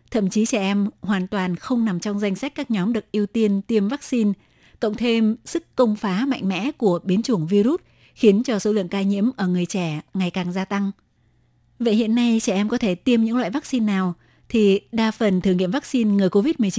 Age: 20-39